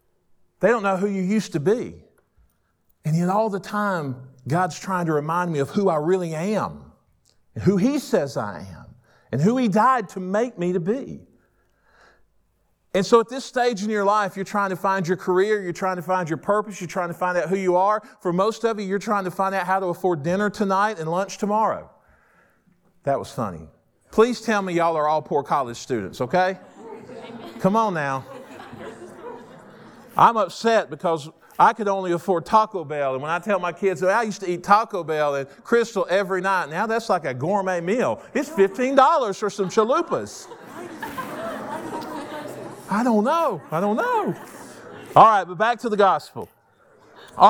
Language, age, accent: English, 40-59, American